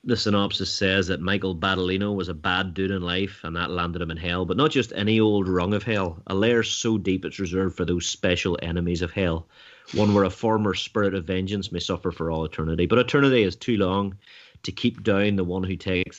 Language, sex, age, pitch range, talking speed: English, male, 30-49, 85-100 Hz, 230 wpm